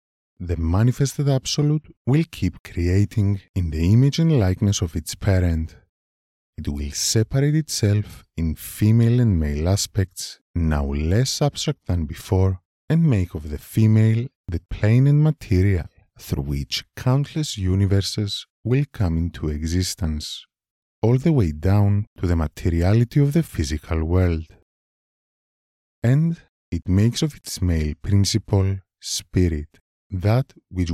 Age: 30-49